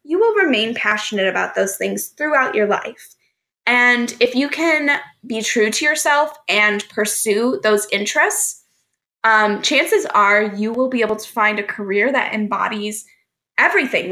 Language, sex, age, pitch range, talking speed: English, female, 10-29, 210-250 Hz, 155 wpm